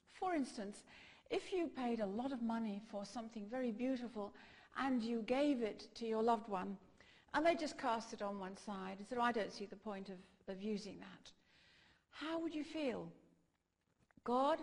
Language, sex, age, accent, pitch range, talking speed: English, female, 60-79, British, 210-275 Hz, 185 wpm